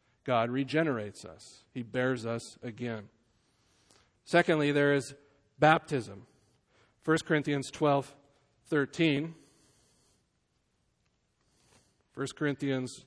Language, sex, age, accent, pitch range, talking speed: English, male, 40-59, American, 125-150 Hz, 80 wpm